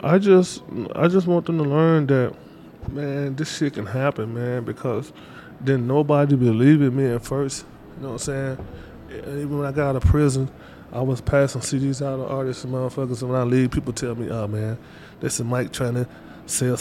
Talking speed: 210 wpm